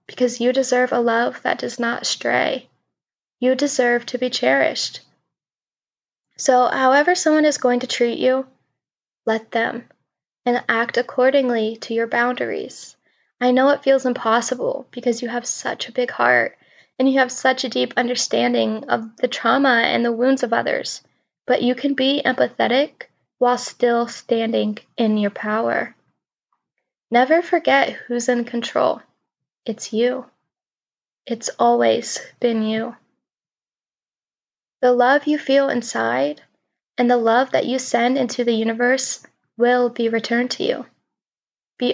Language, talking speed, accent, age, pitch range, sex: English, 140 wpm, American, 10-29, 230-255 Hz, female